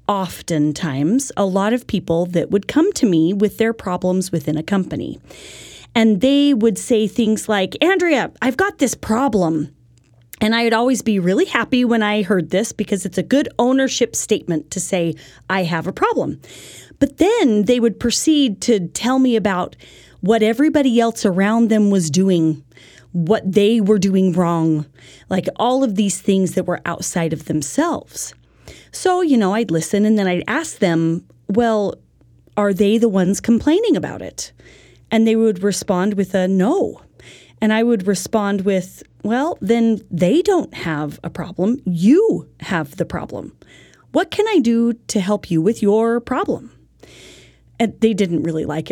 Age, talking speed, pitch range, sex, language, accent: 30-49, 170 wpm, 180-245 Hz, female, English, American